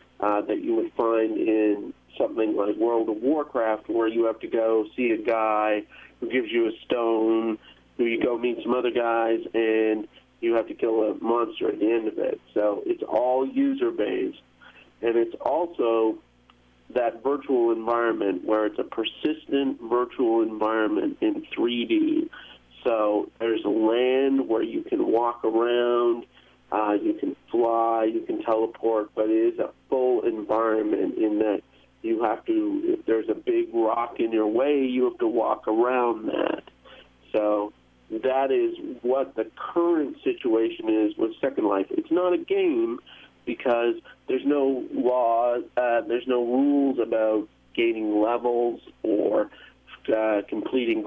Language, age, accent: English, 40-59, American